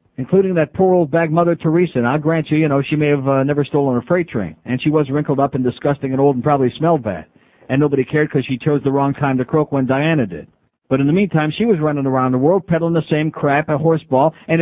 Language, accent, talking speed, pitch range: English, American, 270 wpm, 140-180 Hz